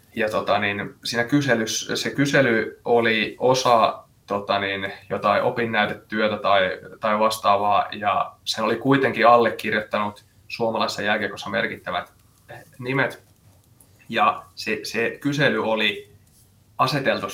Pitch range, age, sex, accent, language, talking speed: 105-130 Hz, 20-39, male, native, Finnish, 105 wpm